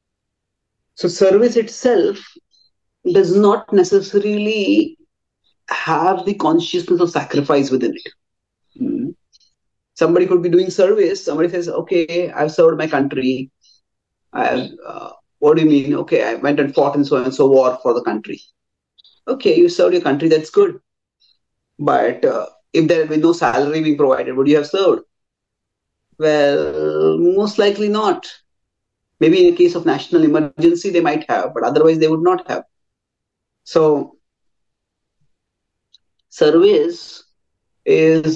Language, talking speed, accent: English, 140 wpm, Indian